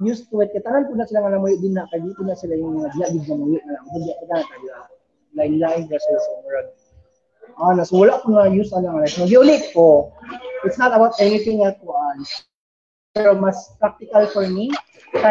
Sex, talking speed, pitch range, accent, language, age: male, 60 wpm, 170-220 Hz, Filipino, English, 20-39